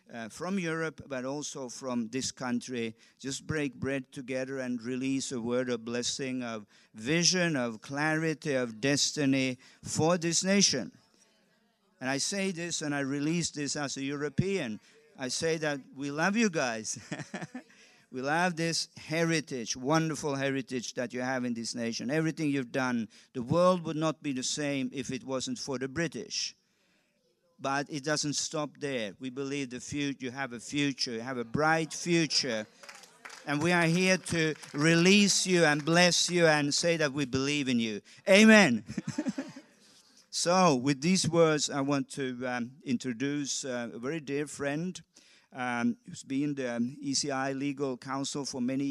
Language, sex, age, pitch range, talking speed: English, male, 50-69, 130-165 Hz, 160 wpm